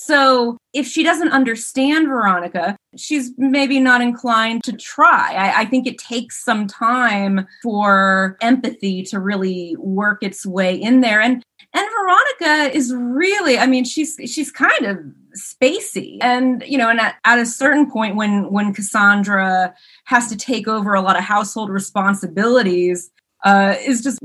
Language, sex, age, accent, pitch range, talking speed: English, female, 30-49, American, 195-265 Hz, 155 wpm